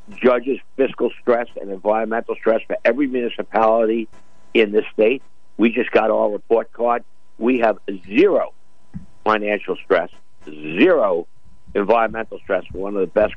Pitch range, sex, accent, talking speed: 100-125 Hz, male, American, 135 wpm